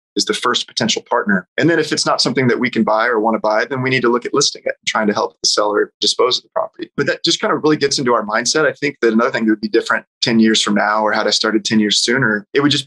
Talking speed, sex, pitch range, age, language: 320 wpm, male, 110-135 Hz, 20-39, English